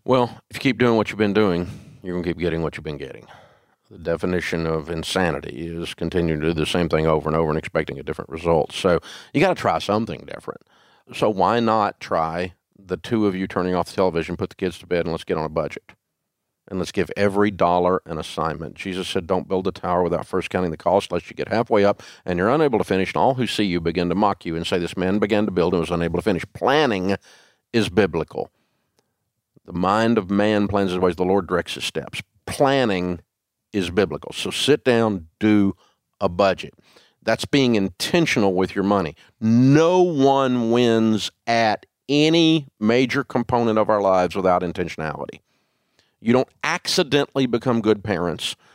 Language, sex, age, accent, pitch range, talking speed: English, male, 50-69, American, 85-115 Hz, 200 wpm